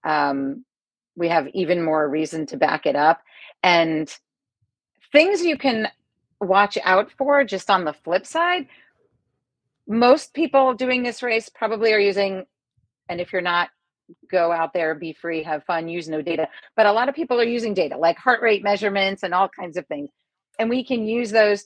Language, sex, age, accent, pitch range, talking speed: English, female, 40-59, American, 165-220 Hz, 185 wpm